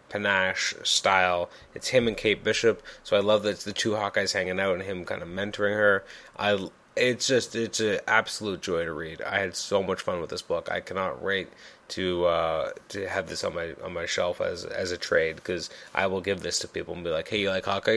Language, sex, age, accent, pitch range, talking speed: English, male, 20-39, American, 100-165 Hz, 235 wpm